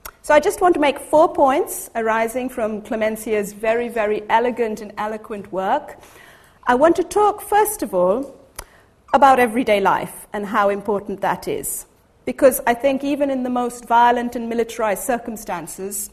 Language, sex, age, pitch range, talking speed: English, female, 40-59, 205-255 Hz, 160 wpm